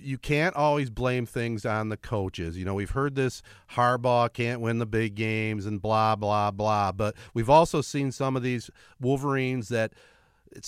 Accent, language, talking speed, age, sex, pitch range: American, English, 185 wpm, 40-59, male, 110-150 Hz